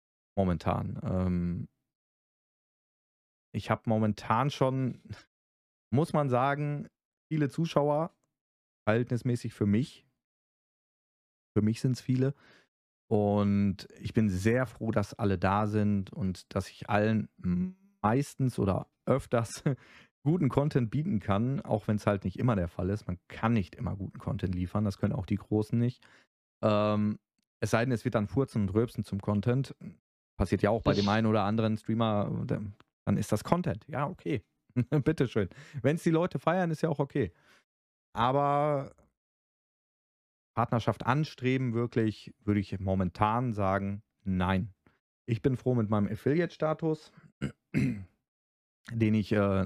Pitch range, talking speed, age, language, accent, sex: 100-130 Hz, 140 wpm, 30-49, German, German, male